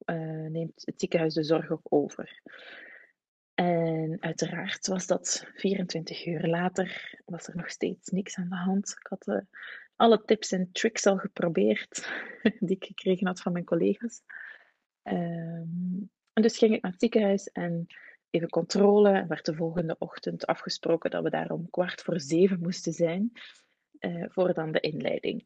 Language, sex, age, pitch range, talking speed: Dutch, female, 30-49, 170-210 Hz, 165 wpm